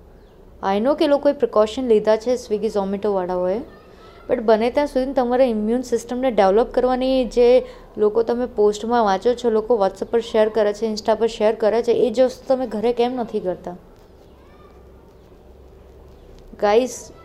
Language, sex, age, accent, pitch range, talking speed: Gujarati, female, 20-39, native, 210-250 Hz, 145 wpm